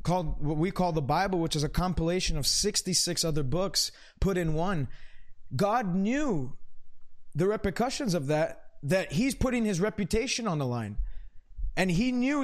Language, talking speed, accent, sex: English, 165 wpm, American, male